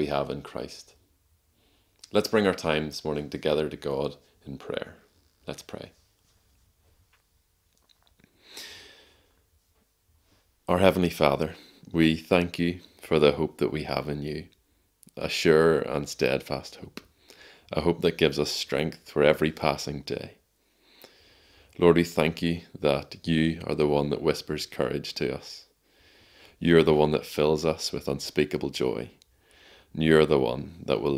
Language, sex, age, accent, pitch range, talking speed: English, male, 20-39, Irish, 75-85 Hz, 145 wpm